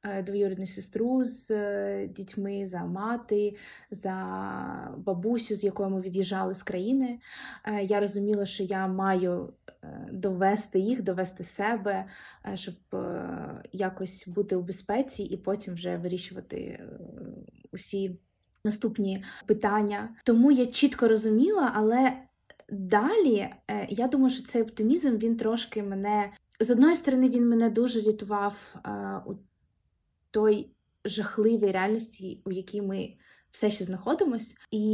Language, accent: Ukrainian, native